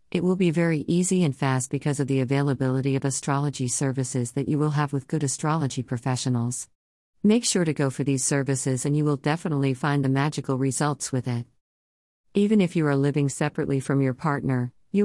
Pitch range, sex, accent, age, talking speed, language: 130-155 Hz, female, American, 50-69, 195 wpm, English